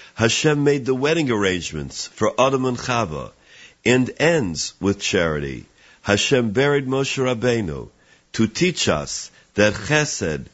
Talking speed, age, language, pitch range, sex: 120 wpm, 50-69, English, 100-135 Hz, male